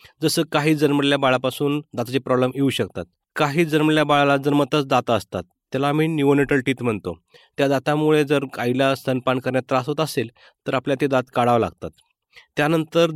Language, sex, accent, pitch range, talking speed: Marathi, male, native, 125-145 Hz, 160 wpm